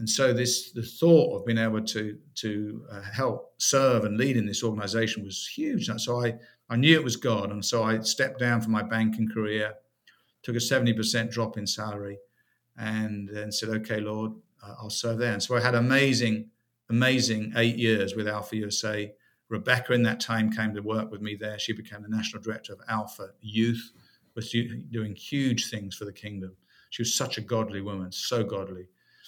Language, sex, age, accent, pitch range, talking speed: English, male, 50-69, British, 105-115 Hz, 195 wpm